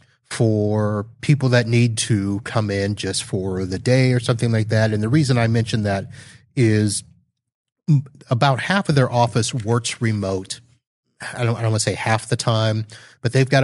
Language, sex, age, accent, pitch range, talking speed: English, male, 30-49, American, 100-125 Hz, 185 wpm